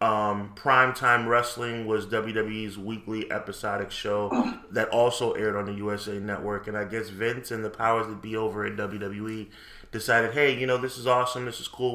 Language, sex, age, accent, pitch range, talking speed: English, male, 20-39, American, 105-115 Hz, 185 wpm